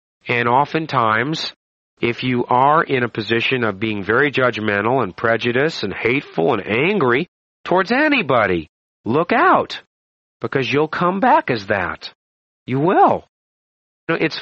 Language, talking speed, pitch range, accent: English, 130 wpm, 110-160 Hz, American